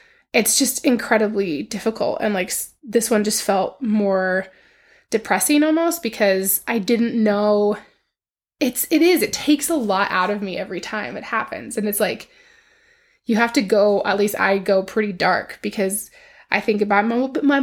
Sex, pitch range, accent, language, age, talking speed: female, 200-250 Hz, American, English, 20-39, 170 wpm